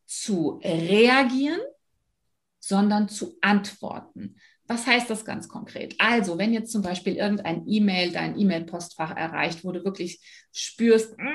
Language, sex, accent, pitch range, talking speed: German, female, German, 185-230 Hz, 120 wpm